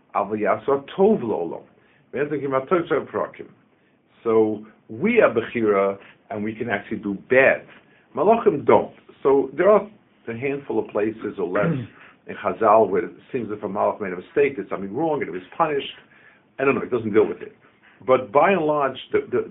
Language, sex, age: English, male, 50-69